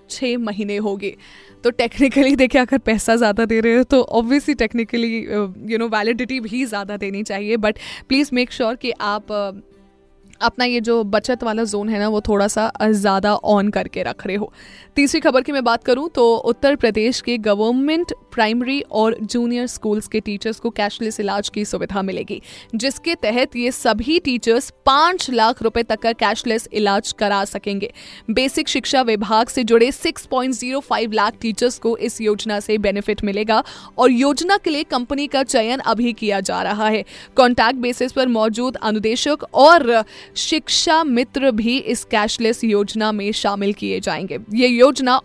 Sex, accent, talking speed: female, native, 170 wpm